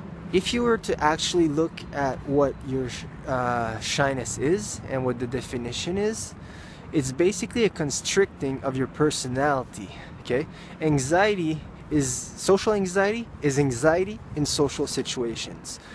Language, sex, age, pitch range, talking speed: English, male, 20-39, 130-170 Hz, 130 wpm